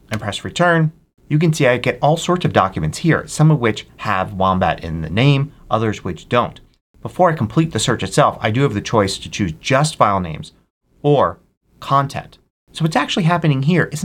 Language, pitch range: English, 105-155 Hz